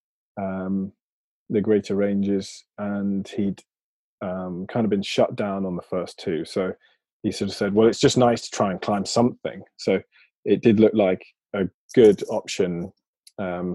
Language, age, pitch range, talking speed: English, 20-39, 95-115 Hz, 170 wpm